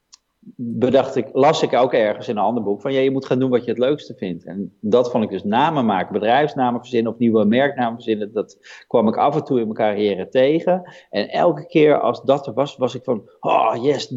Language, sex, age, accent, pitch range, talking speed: Dutch, male, 40-59, Dutch, 105-145 Hz, 235 wpm